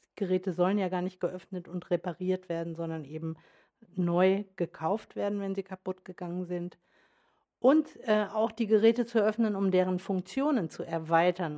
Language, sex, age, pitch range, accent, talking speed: German, female, 50-69, 175-210 Hz, German, 160 wpm